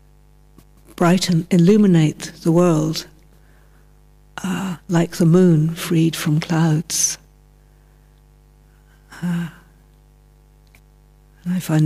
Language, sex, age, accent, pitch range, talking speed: English, female, 60-79, British, 155-175 Hz, 75 wpm